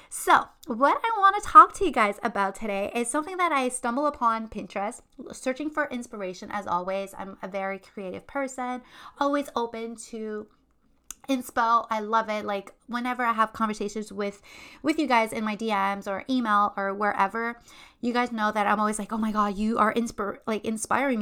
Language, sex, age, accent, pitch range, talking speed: English, female, 20-39, American, 200-250 Hz, 185 wpm